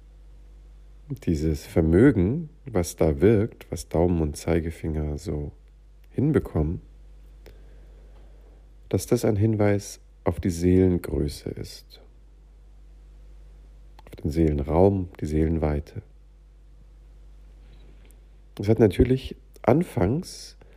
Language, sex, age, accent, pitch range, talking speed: German, male, 50-69, German, 75-95 Hz, 80 wpm